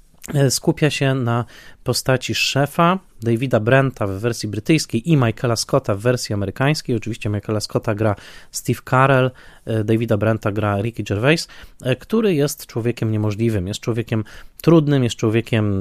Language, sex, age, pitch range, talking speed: Polish, male, 20-39, 110-135 Hz, 135 wpm